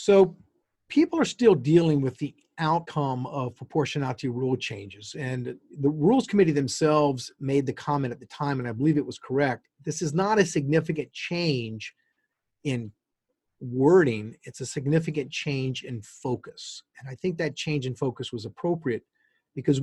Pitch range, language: 120-155 Hz, English